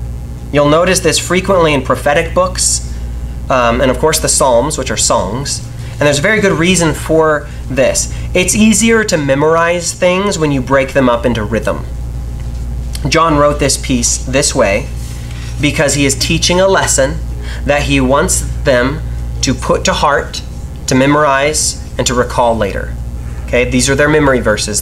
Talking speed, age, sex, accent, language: 165 wpm, 30-49, male, American, English